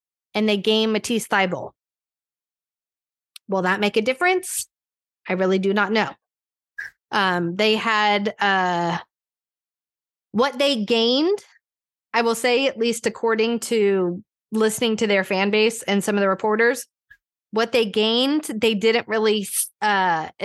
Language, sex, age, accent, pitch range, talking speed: English, female, 20-39, American, 200-250 Hz, 135 wpm